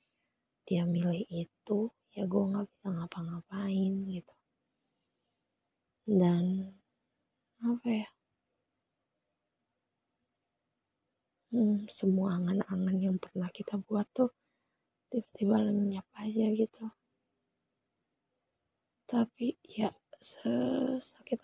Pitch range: 180-215 Hz